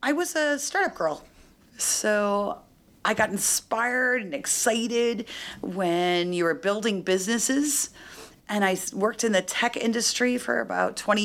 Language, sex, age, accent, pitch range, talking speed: English, female, 40-59, American, 185-240 Hz, 140 wpm